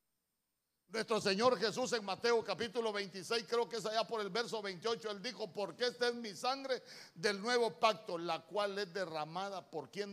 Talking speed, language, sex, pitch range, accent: 185 wpm, Spanish, male, 160-225 Hz, Mexican